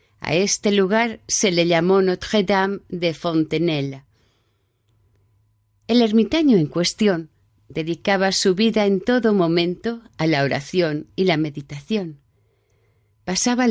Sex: female